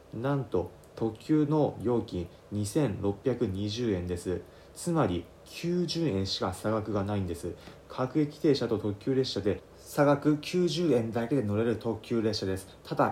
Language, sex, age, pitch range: Japanese, male, 30-49, 100-145 Hz